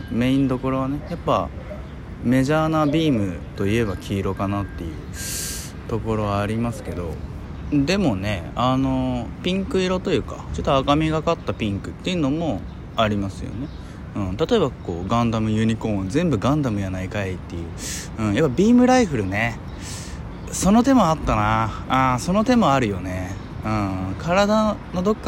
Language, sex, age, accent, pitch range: Japanese, male, 20-39, native, 95-145 Hz